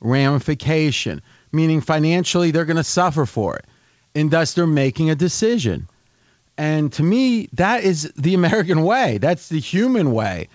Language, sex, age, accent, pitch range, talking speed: English, male, 30-49, American, 135-175 Hz, 155 wpm